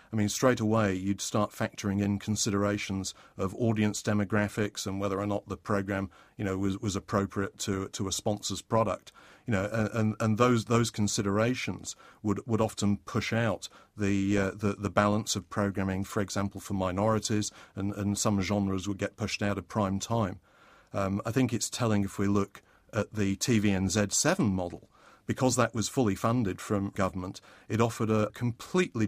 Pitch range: 100-110 Hz